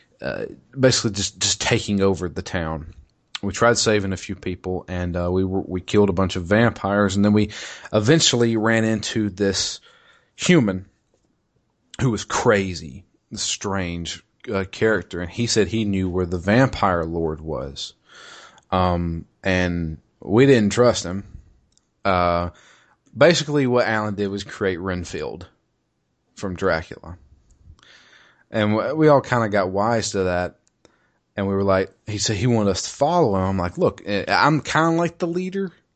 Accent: American